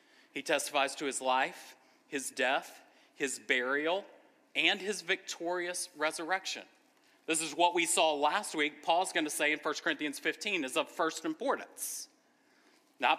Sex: male